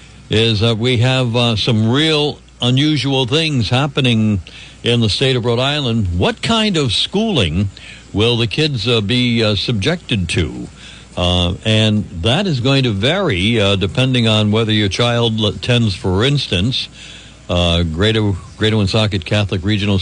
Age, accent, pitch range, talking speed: 60-79, American, 105-135 Hz, 150 wpm